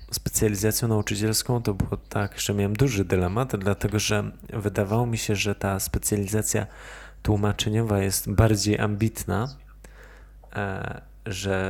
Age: 20-39